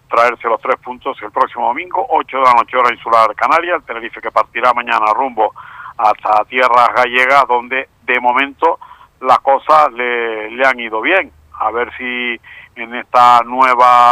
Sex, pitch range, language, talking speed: male, 115-125 Hz, Spanish, 165 wpm